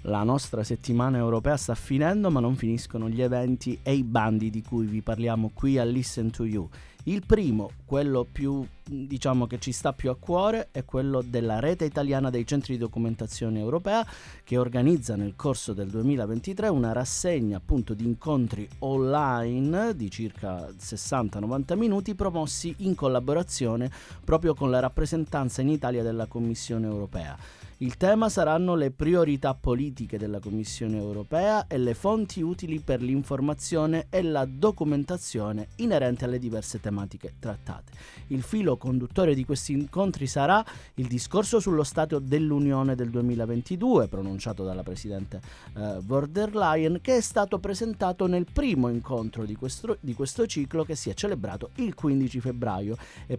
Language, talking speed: Italian, 150 wpm